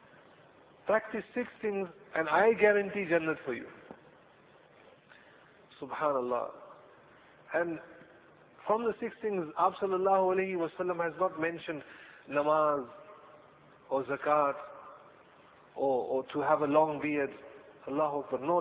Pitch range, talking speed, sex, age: 155-195 Hz, 105 wpm, male, 50-69